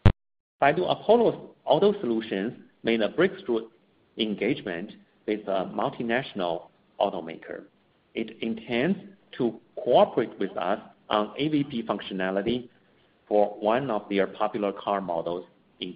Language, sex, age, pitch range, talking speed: English, male, 50-69, 105-150 Hz, 110 wpm